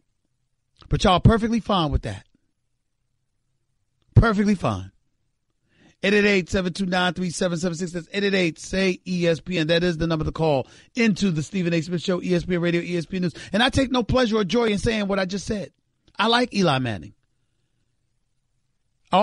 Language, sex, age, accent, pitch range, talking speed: English, male, 40-59, American, 145-230 Hz, 145 wpm